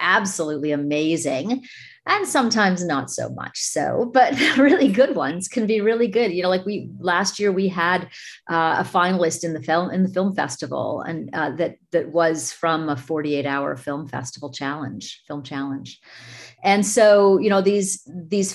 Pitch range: 150-195 Hz